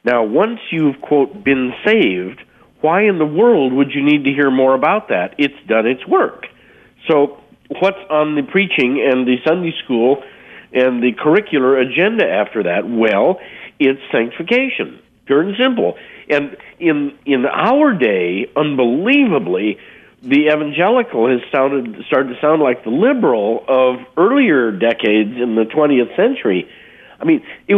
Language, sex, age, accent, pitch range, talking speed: English, male, 50-69, American, 135-205 Hz, 145 wpm